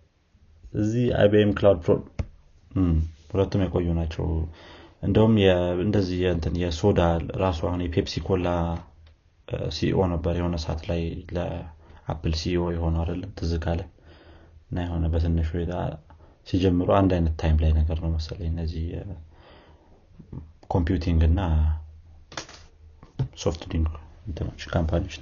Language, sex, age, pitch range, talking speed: Amharic, male, 30-49, 80-90 Hz, 90 wpm